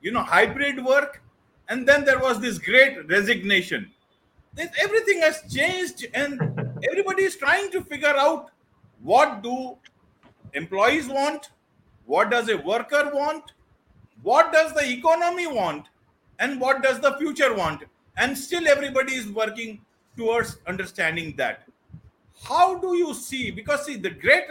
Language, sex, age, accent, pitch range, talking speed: English, male, 50-69, Indian, 240-315 Hz, 140 wpm